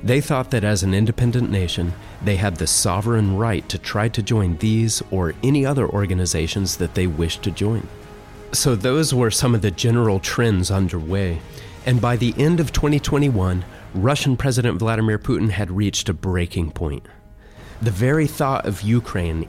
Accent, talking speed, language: American, 170 wpm, English